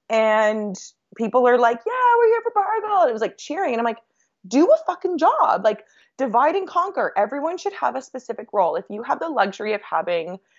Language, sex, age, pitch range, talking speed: English, female, 20-39, 175-240 Hz, 210 wpm